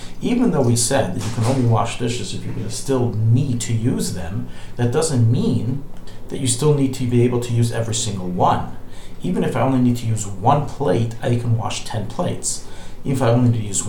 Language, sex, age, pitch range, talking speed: English, male, 40-59, 110-130 Hz, 225 wpm